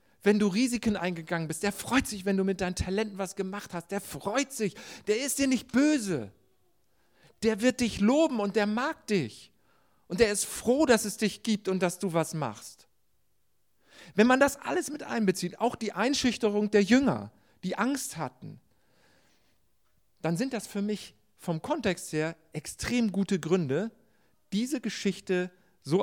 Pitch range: 130-210 Hz